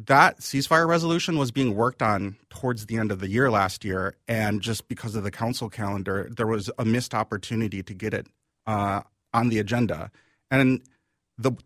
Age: 30-49